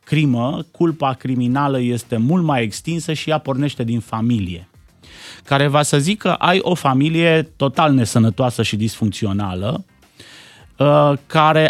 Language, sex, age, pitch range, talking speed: Romanian, male, 30-49, 115-160 Hz, 125 wpm